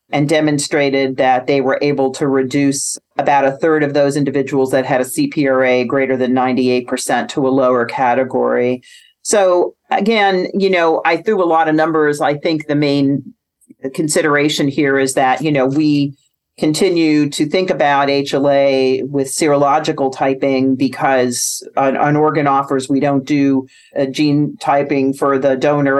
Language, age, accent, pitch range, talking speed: English, 40-59, American, 130-150 Hz, 155 wpm